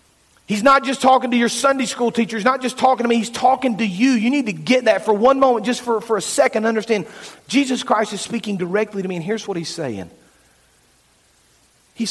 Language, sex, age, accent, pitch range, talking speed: English, male, 40-59, American, 195-250 Hz, 230 wpm